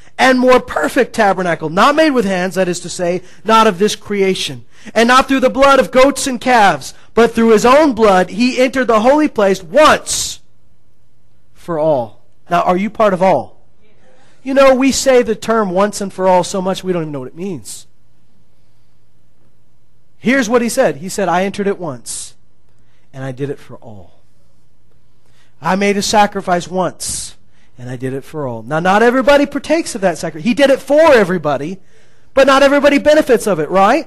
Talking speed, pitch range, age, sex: 190 wpm, 175-255 Hz, 30-49, male